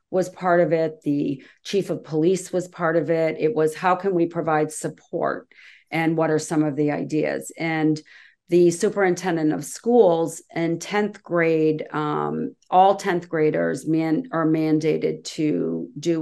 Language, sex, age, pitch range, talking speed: English, female, 40-59, 155-180 Hz, 160 wpm